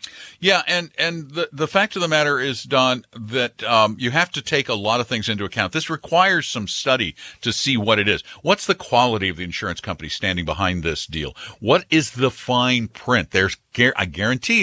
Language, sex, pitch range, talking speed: English, male, 95-150 Hz, 210 wpm